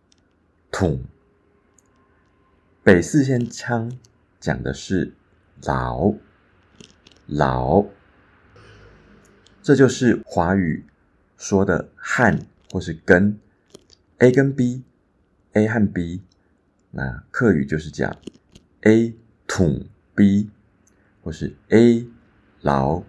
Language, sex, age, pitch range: Chinese, male, 50-69, 80-105 Hz